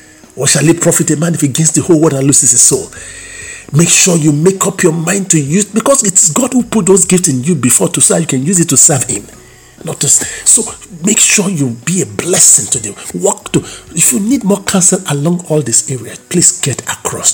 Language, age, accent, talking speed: English, 50-69, Nigerian, 240 wpm